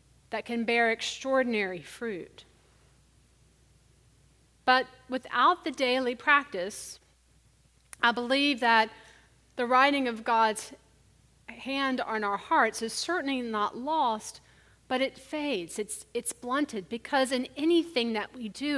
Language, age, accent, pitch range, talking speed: English, 40-59, American, 210-265 Hz, 120 wpm